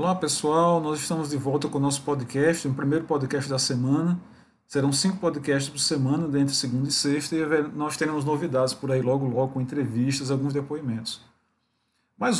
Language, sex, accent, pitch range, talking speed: Portuguese, male, Brazilian, 130-160 Hz, 180 wpm